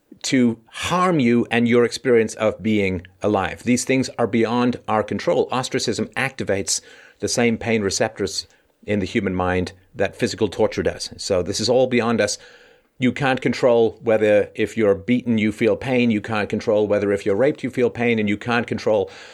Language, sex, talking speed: English, male, 185 wpm